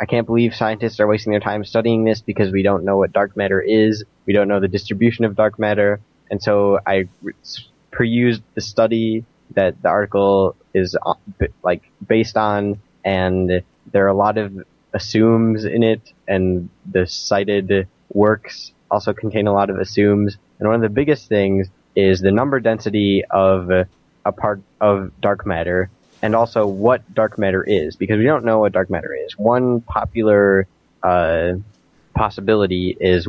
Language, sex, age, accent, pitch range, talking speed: English, male, 10-29, American, 95-110 Hz, 170 wpm